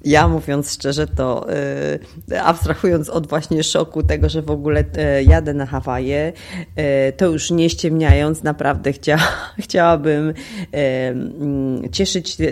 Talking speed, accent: 105 wpm, native